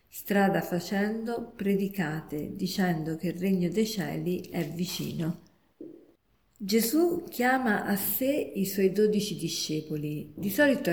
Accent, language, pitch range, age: native, Italian, 170-215 Hz, 50-69